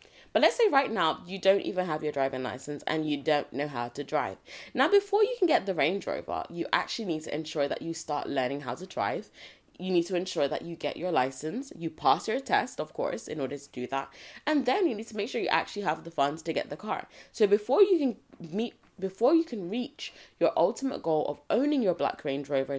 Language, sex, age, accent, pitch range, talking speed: English, female, 20-39, British, 150-205 Hz, 235 wpm